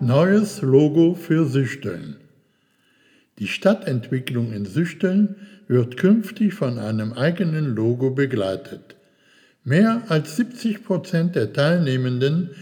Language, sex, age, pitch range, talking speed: German, male, 60-79, 120-175 Hz, 100 wpm